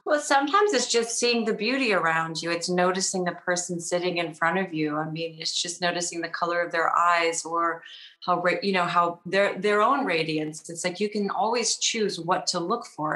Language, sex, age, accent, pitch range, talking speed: English, female, 30-49, American, 170-210 Hz, 220 wpm